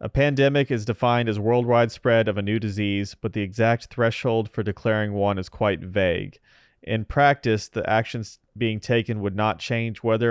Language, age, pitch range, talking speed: English, 30-49, 100-120 Hz, 180 wpm